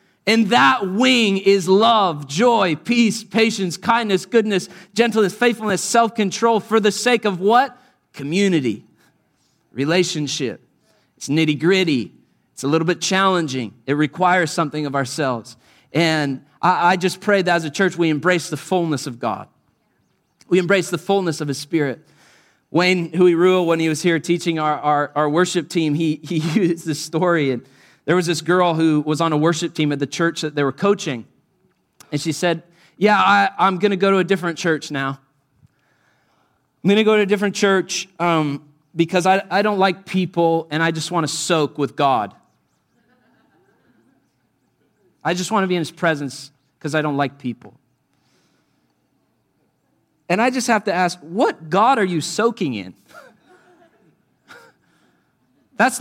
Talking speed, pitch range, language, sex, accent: 160 wpm, 155-200 Hz, English, male, American